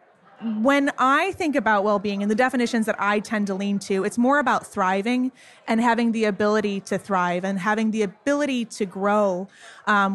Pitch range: 200-255 Hz